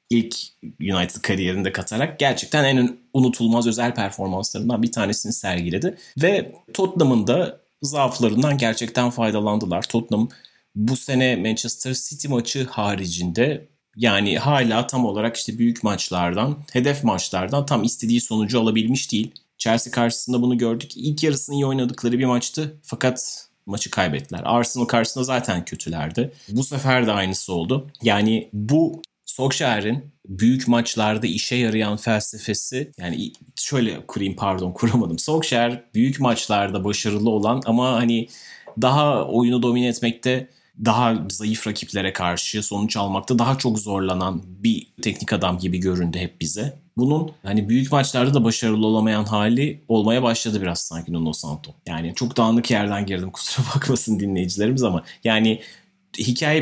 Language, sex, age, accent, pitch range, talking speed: Turkish, male, 30-49, native, 105-125 Hz, 130 wpm